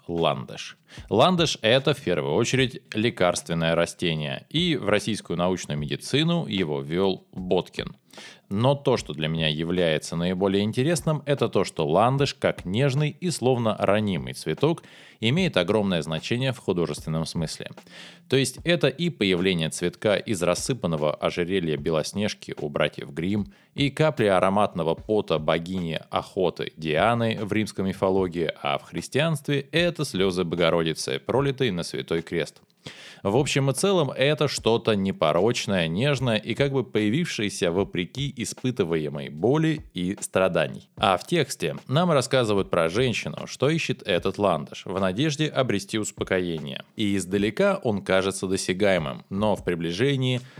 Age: 20-39